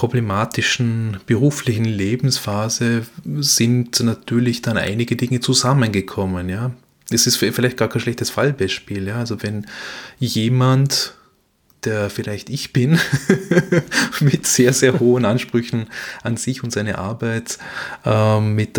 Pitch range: 105-125 Hz